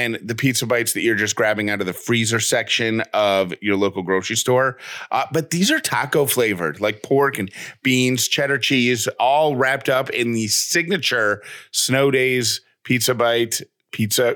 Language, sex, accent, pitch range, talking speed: English, male, American, 120-155 Hz, 170 wpm